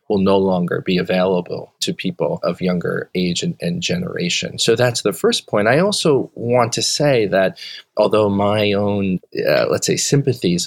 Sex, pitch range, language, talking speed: male, 95-125 Hz, English, 175 wpm